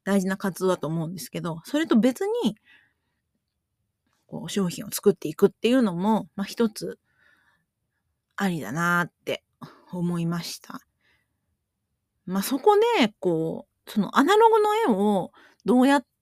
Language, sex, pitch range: Japanese, female, 165-230 Hz